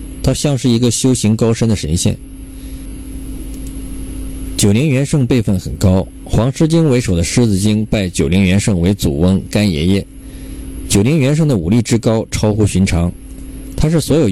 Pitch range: 90-115 Hz